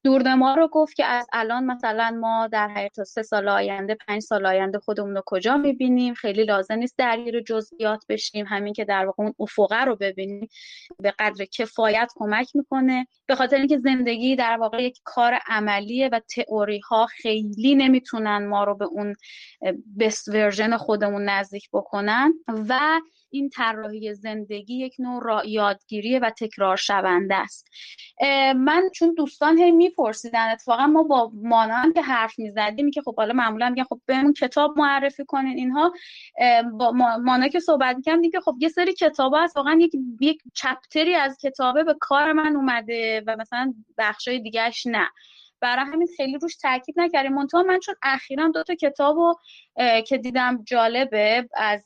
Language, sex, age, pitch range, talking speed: Persian, female, 20-39, 215-280 Hz, 160 wpm